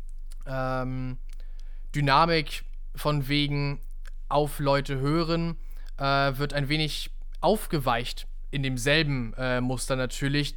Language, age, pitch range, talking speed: German, 20-39, 135-155 Hz, 95 wpm